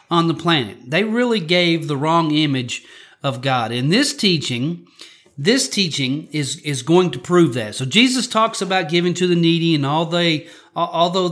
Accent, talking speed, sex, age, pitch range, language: American, 180 wpm, male, 40-59, 150-195 Hz, English